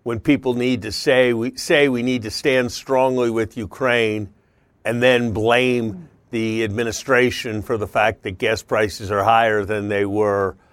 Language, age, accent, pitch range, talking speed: English, 50-69, American, 105-125 Hz, 170 wpm